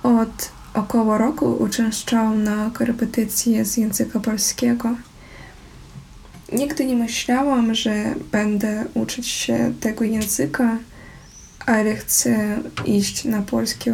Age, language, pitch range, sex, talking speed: 20-39, Polish, 215-245 Hz, female, 100 wpm